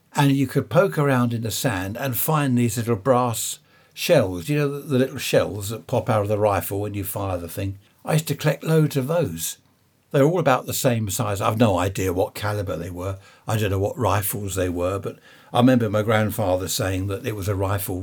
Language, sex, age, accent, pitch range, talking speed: English, male, 60-79, British, 100-130 Hz, 235 wpm